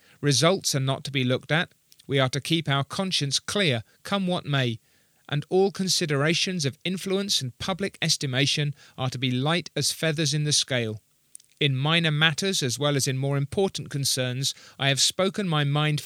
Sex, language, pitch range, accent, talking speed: male, English, 130-160 Hz, British, 185 wpm